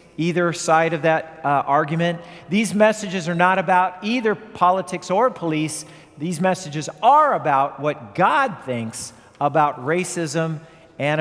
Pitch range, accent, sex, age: 150-185 Hz, American, male, 50-69